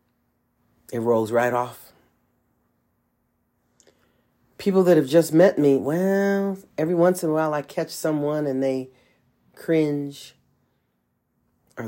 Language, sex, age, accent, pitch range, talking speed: English, male, 40-59, American, 120-155 Hz, 115 wpm